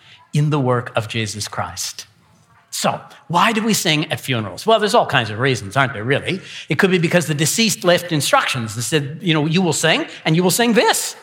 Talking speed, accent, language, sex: 225 wpm, American, English, male